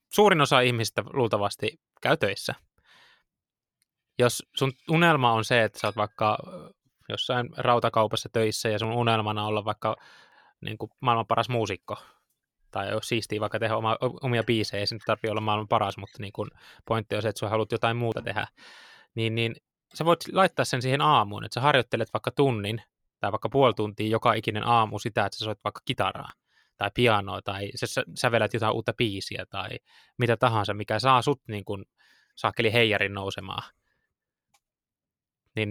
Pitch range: 105-125 Hz